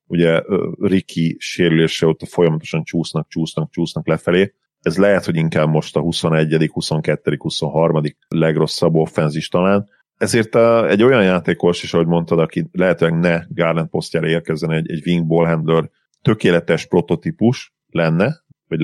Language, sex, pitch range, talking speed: Hungarian, male, 80-95 Hz, 135 wpm